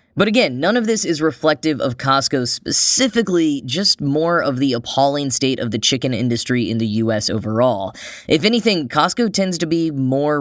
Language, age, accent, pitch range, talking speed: English, 10-29, American, 120-155 Hz, 180 wpm